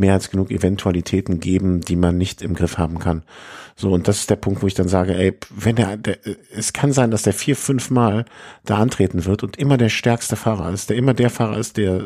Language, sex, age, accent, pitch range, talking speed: German, male, 50-69, German, 95-115 Hz, 240 wpm